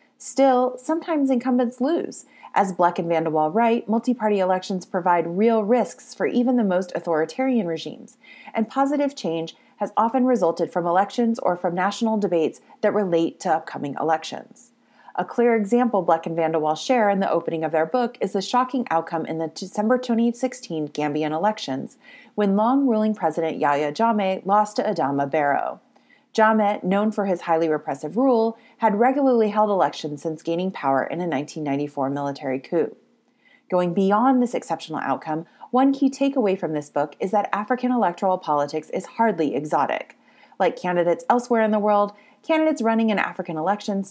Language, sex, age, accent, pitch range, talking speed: English, female, 30-49, American, 165-245 Hz, 160 wpm